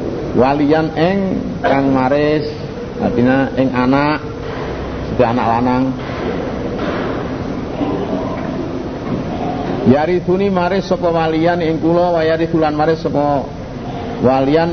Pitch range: 130-155 Hz